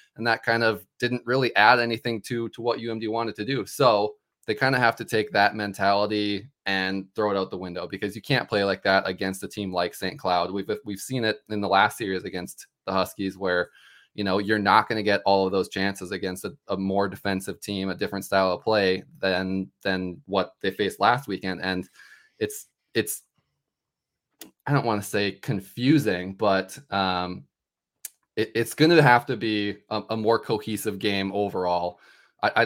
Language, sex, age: English, male, 20-39